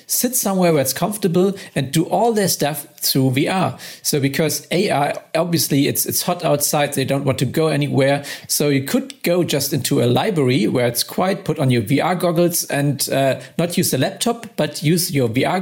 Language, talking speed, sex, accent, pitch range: English, 200 wpm, male, German, 135-165 Hz